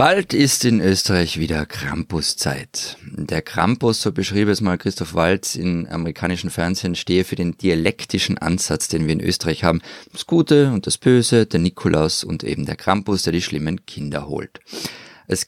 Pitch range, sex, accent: 90-115 Hz, male, German